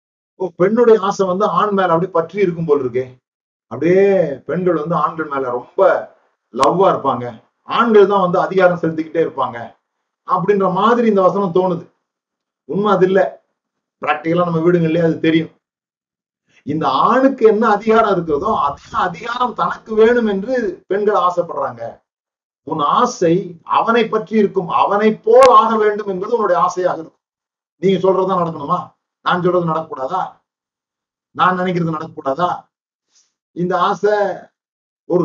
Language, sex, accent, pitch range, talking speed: Tamil, male, native, 160-195 Hz, 125 wpm